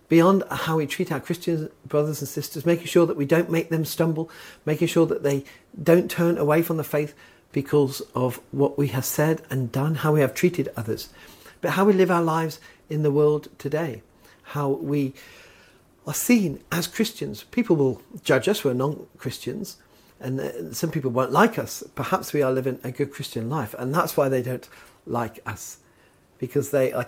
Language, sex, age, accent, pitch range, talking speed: English, male, 40-59, British, 130-165 Hz, 190 wpm